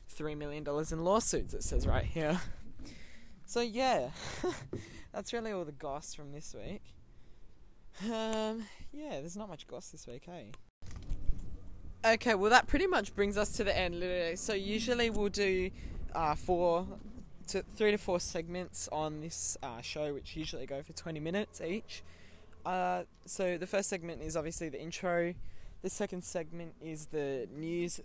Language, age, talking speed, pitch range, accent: English, 20-39, 165 wpm, 145-190 Hz, Australian